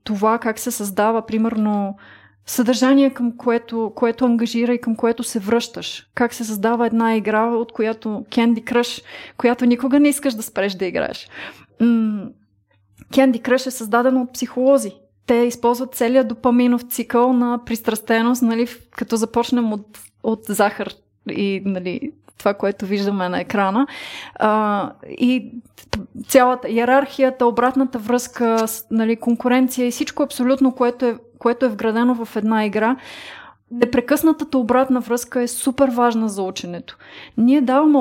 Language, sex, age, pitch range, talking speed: Bulgarian, female, 30-49, 220-255 Hz, 140 wpm